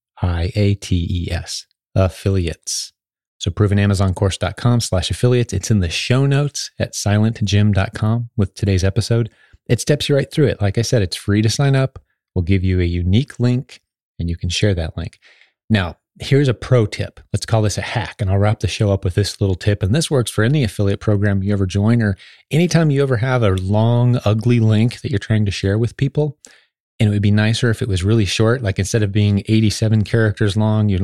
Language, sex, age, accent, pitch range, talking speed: English, male, 30-49, American, 95-115 Hz, 205 wpm